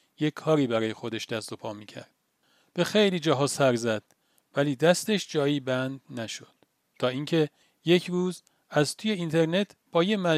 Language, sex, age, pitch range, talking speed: Persian, male, 40-59, 130-165 Hz, 155 wpm